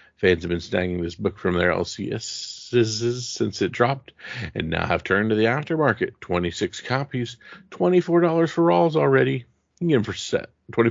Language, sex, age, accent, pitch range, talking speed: English, male, 50-69, American, 95-135 Hz, 180 wpm